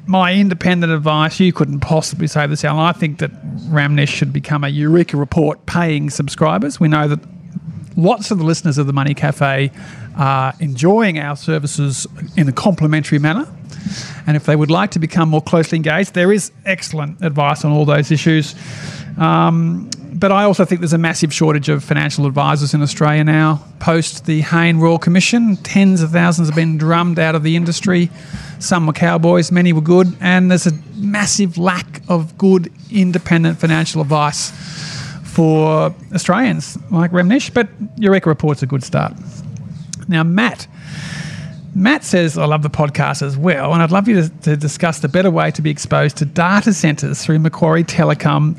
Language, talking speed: English, 175 wpm